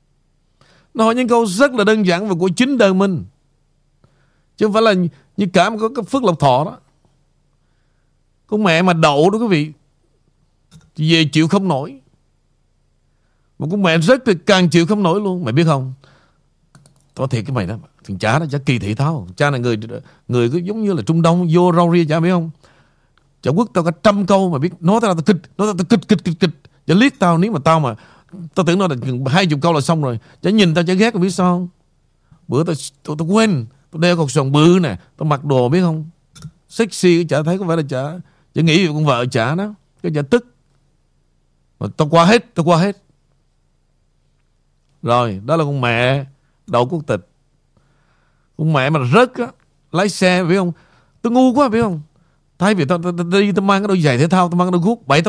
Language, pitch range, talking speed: Vietnamese, 145-190 Hz, 215 wpm